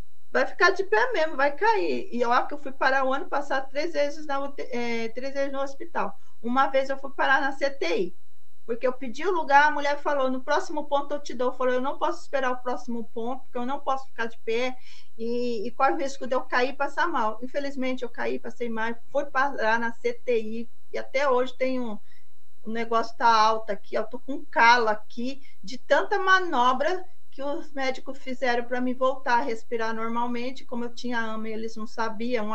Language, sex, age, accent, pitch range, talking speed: Portuguese, female, 40-59, Brazilian, 235-285 Hz, 220 wpm